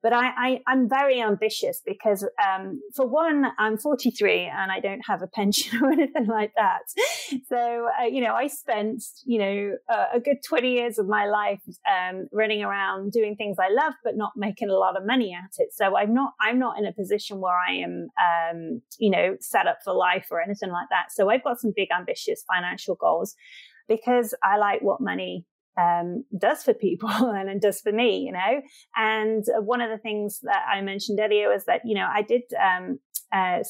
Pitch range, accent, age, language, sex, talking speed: 195-250 Hz, British, 30-49, English, female, 205 wpm